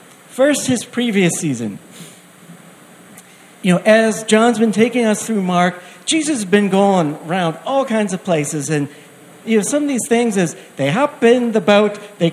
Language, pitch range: English, 175-230 Hz